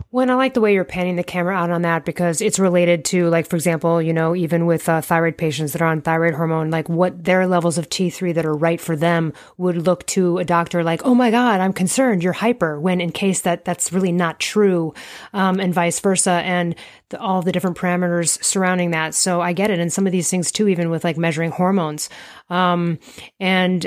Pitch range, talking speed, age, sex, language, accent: 170-195 Hz, 230 wpm, 30-49, female, English, American